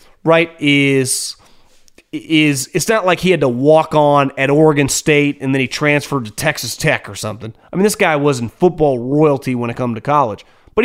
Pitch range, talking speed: 145-220 Hz, 200 wpm